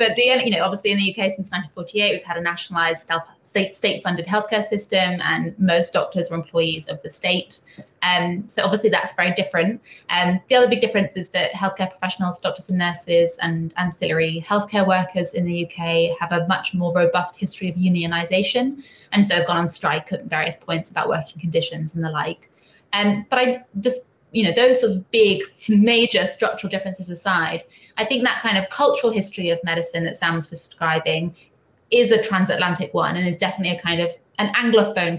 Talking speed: 190 wpm